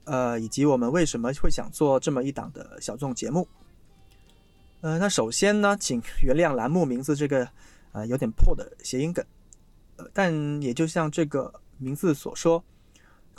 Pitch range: 125-175 Hz